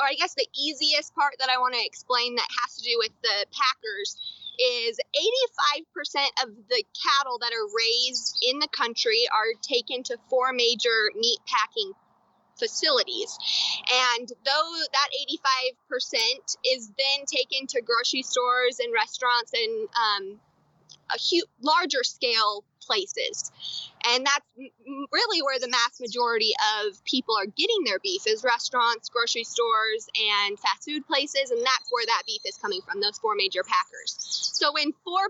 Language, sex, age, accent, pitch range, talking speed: English, female, 20-39, American, 240-380 Hz, 155 wpm